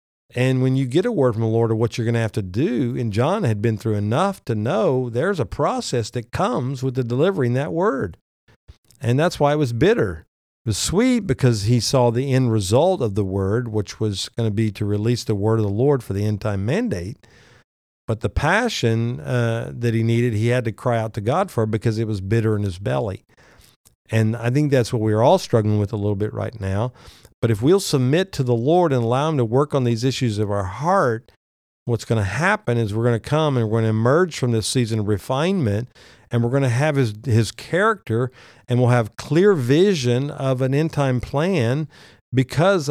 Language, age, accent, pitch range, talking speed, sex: English, 50-69, American, 110-140 Hz, 225 wpm, male